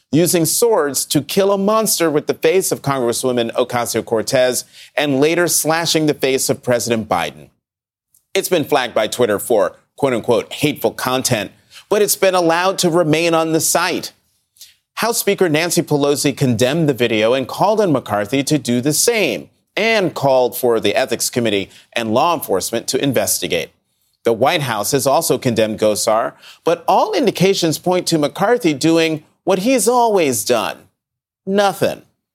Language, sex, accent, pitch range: English, male, American, 130-180 Hz